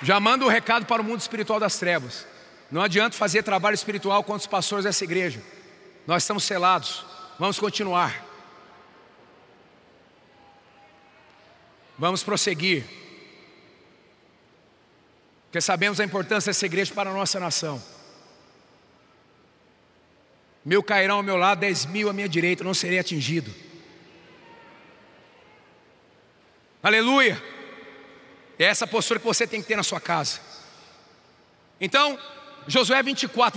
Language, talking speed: Portuguese, 120 wpm